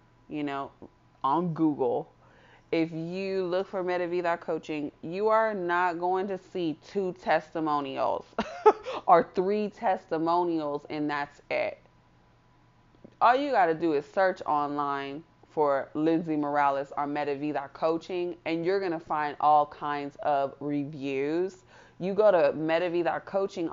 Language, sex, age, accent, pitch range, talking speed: English, female, 30-49, American, 145-185 Hz, 125 wpm